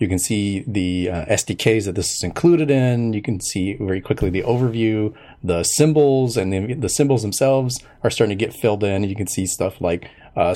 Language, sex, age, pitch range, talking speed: English, male, 30-49, 95-120 Hz, 210 wpm